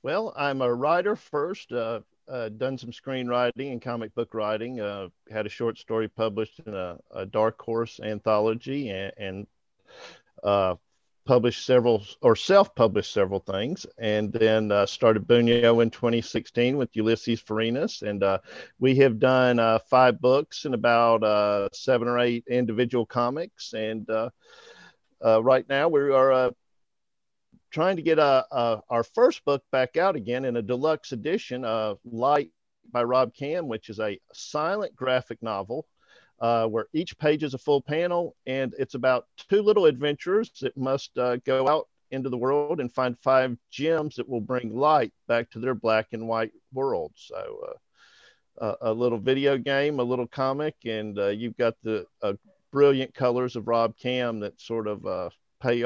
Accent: American